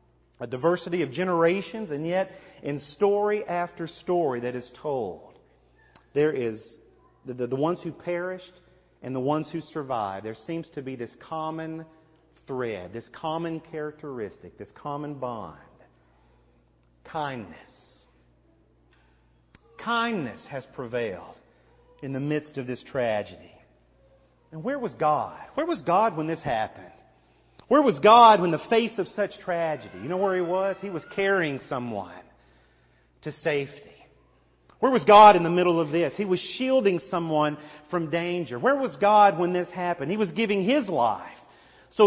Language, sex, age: English, male, 40-59